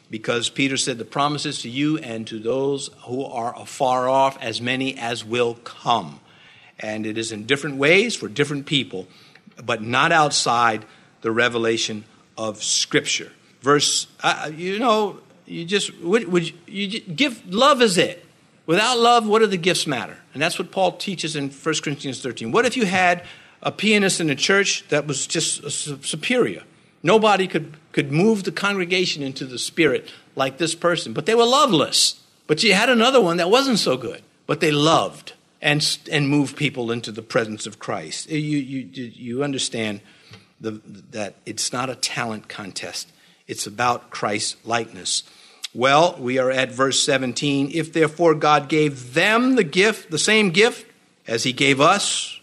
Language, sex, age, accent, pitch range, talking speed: English, male, 50-69, American, 130-180 Hz, 175 wpm